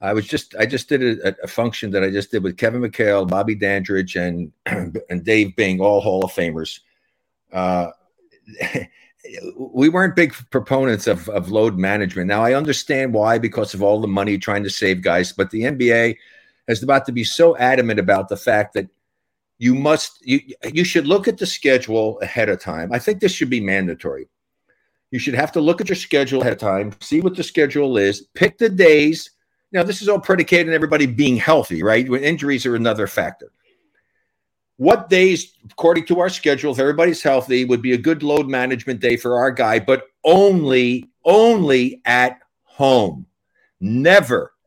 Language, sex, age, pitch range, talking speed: English, male, 50-69, 110-170 Hz, 185 wpm